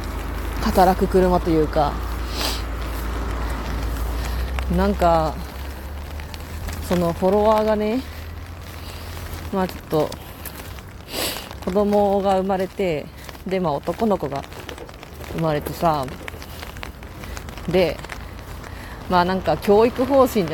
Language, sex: Japanese, female